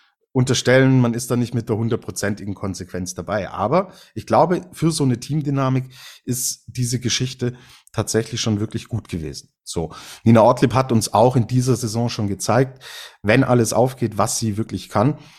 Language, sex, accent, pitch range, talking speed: German, male, German, 105-130 Hz, 170 wpm